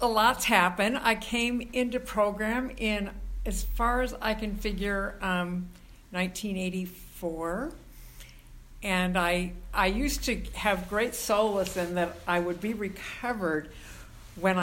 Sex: female